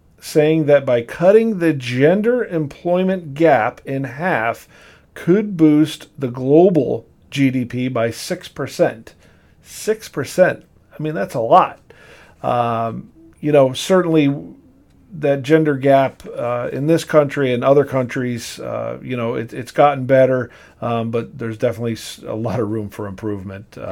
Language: English